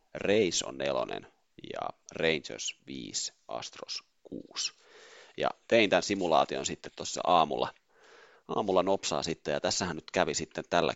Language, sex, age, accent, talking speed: Finnish, male, 30-49, native, 130 wpm